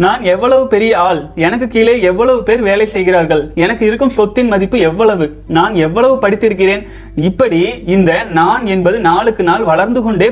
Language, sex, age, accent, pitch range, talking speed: Tamil, male, 30-49, native, 175-225 Hz, 150 wpm